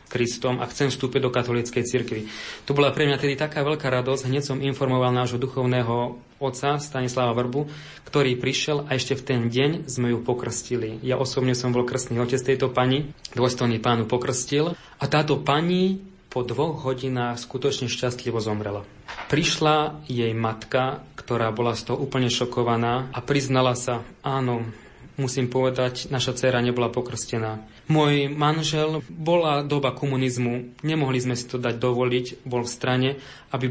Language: Slovak